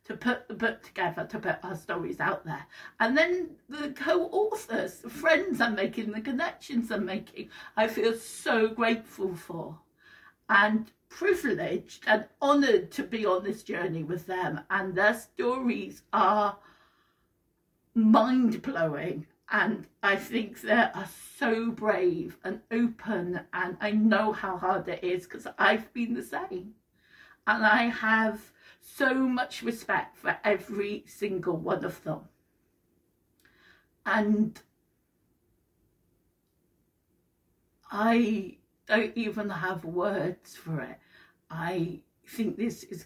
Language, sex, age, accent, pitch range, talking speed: English, female, 50-69, British, 190-230 Hz, 125 wpm